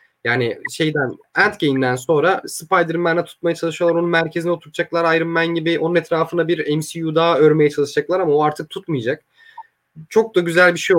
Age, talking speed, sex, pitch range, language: 30-49, 155 wpm, male, 150-180 Hz, Turkish